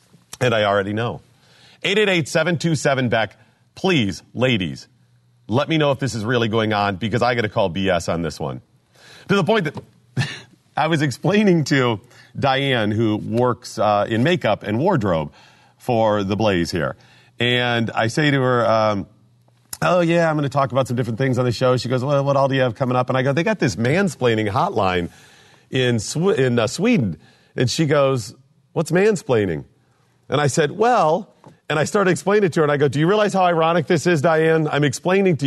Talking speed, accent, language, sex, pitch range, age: 200 wpm, American, English, male, 115-155 Hz, 40-59